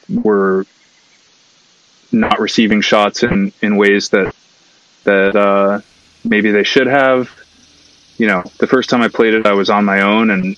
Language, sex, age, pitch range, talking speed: English, male, 20-39, 95-105 Hz, 160 wpm